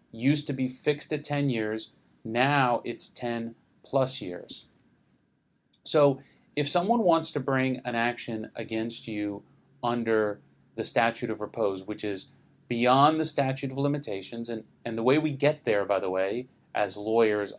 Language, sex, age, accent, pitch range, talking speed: English, male, 30-49, American, 110-135 Hz, 155 wpm